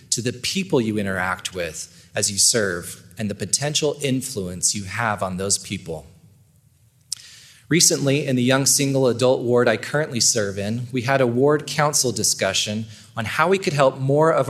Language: English